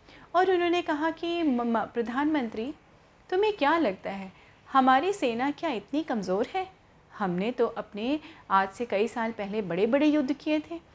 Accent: native